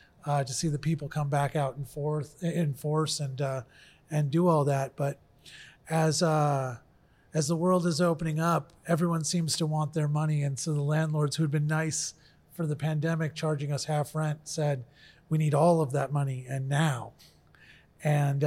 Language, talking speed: English, 190 wpm